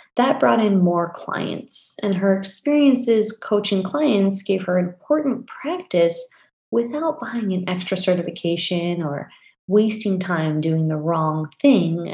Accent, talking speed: American, 130 wpm